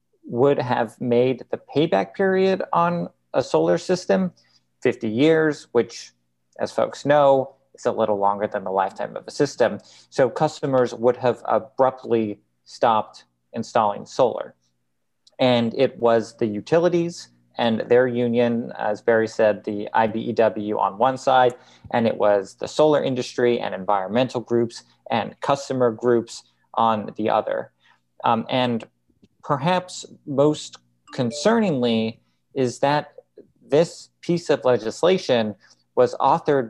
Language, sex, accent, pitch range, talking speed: English, male, American, 105-130 Hz, 130 wpm